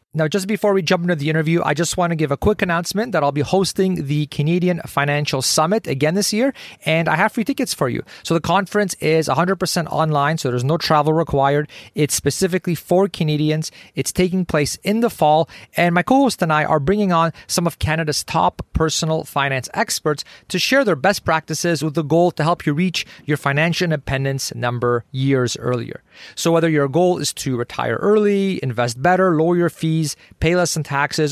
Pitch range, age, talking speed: 140-180 Hz, 30-49, 200 wpm